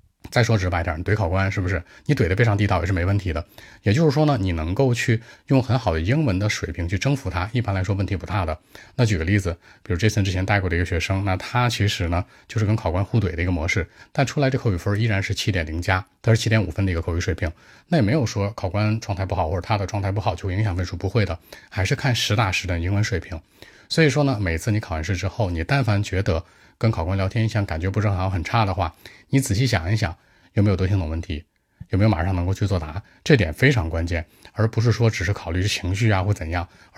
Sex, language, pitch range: male, Chinese, 90-110 Hz